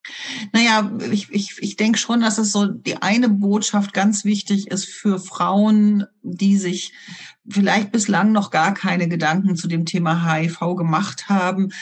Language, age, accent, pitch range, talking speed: German, 50-69, German, 175-210 Hz, 155 wpm